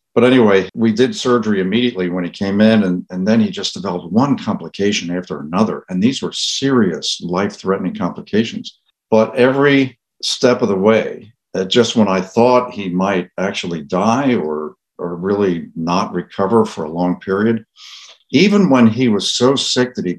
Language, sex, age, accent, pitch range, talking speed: English, male, 60-79, American, 90-120 Hz, 170 wpm